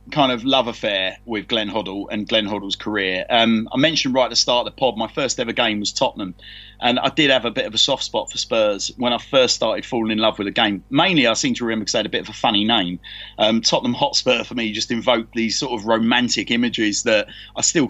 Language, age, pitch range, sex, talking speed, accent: English, 30-49, 105-130 Hz, male, 260 wpm, British